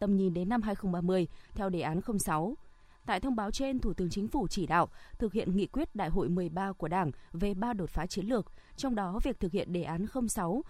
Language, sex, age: Vietnamese, female, 20-39